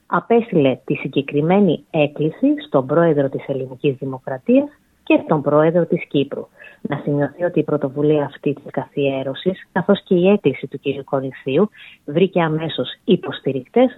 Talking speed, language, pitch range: 135 wpm, Greek, 140-190 Hz